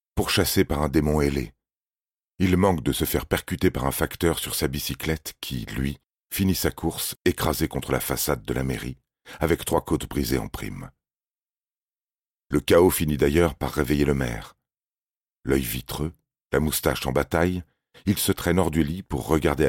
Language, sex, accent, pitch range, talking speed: French, male, French, 65-85 Hz, 175 wpm